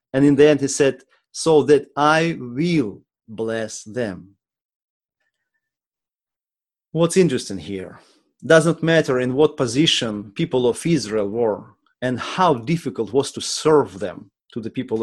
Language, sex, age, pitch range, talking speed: English, male, 30-49, 125-165 Hz, 140 wpm